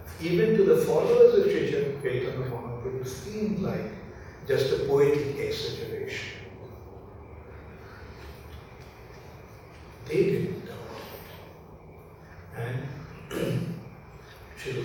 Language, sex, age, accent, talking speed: English, male, 60-79, Indian, 75 wpm